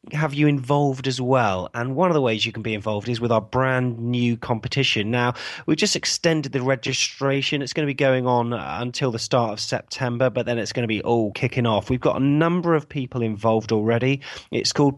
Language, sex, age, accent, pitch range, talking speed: English, male, 30-49, British, 115-140 Hz, 225 wpm